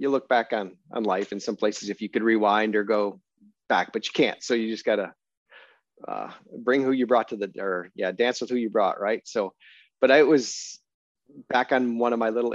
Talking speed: 230 wpm